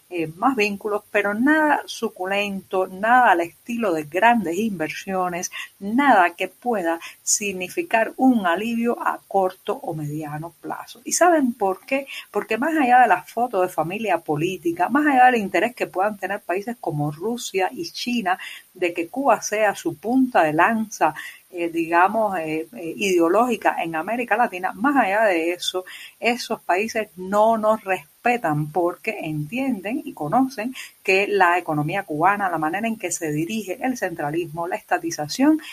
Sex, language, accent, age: female, Spanish, American, 50-69